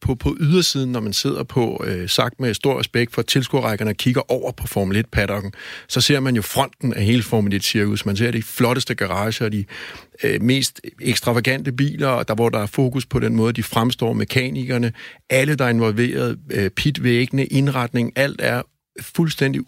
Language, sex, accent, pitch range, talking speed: Danish, male, native, 115-140 Hz, 175 wpm